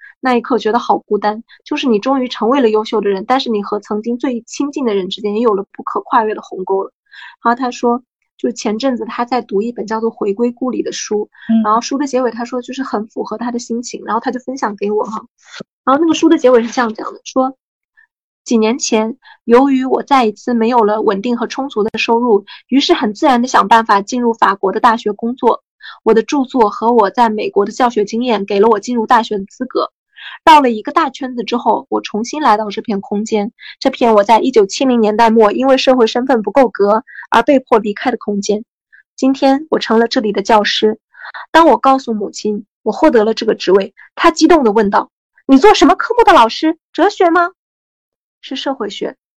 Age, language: 20-39, Chinese